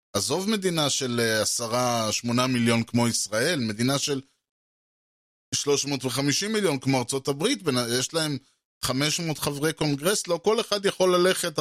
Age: 20-39